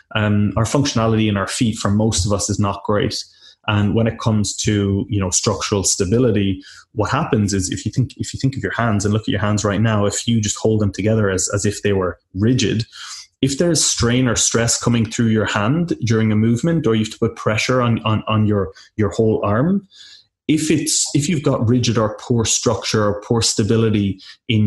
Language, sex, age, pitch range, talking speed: English, male, 20-39, 100-115 Hz, 225 wpm